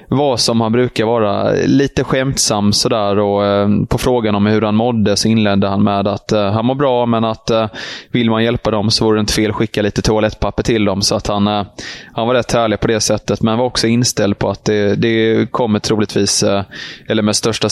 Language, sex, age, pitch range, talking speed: Swedish, male, 20-39, 100-115 Hz, 210 wpm